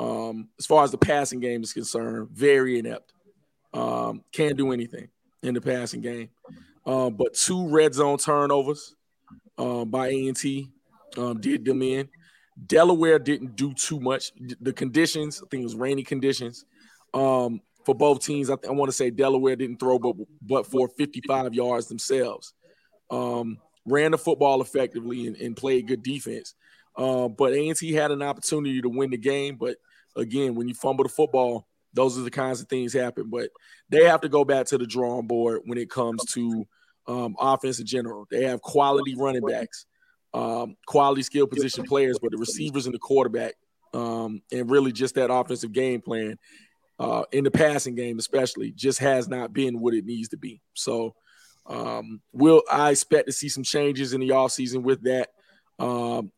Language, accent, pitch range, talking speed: English, American, 120-140 Hz, 185 wpm